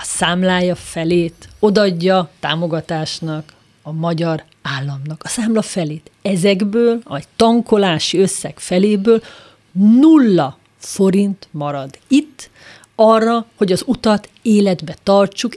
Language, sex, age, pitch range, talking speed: Hungarian, female, 30-49, 170-225 Hz, 105 wpm